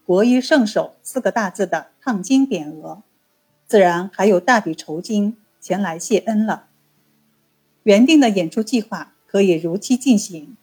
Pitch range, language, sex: 175-240 Hz, Chinese, female